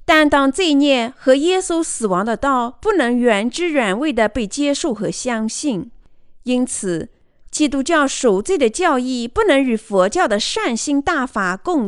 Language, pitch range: Chinese, 225-330 Hz